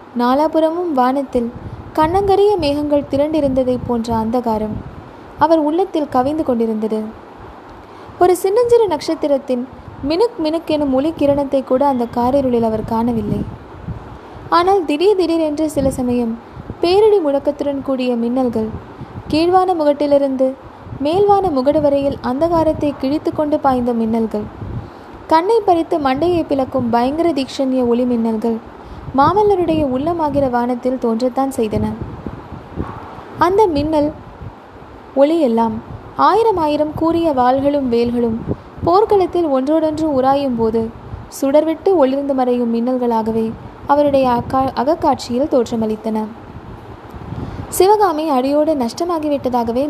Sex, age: female, 20-39